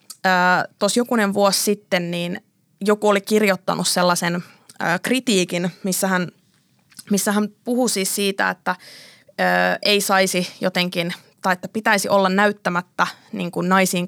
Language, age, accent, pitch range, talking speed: Finnish, 20-39, native, 180-205 Hz, 130 wpm